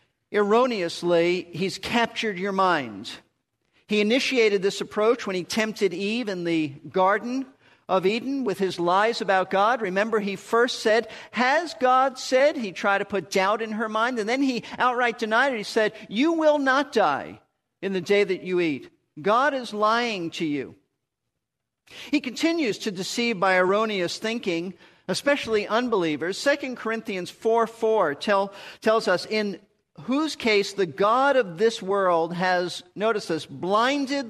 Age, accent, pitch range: 50-69, American, 185-230 Hz